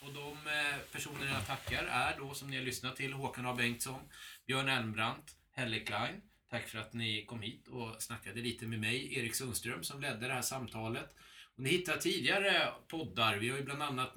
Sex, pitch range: male, 115-135 Hz